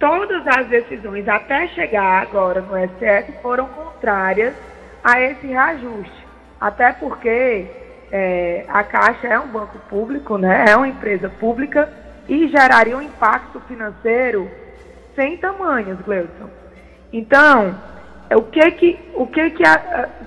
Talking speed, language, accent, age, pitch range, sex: 110 wpm, Portuguese, Brazilian, 20-39, 205-290 Hz, female